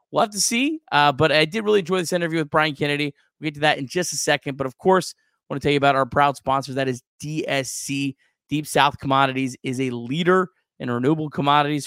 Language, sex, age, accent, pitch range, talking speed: English, male, 20-39, American, 130-165 Hz, 240 wpm